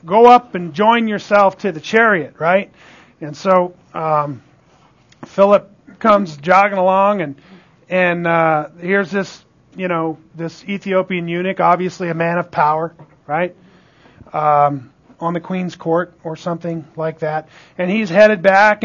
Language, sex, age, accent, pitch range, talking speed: English, male, 40-59, American, 160-200 Hz, 145 wpm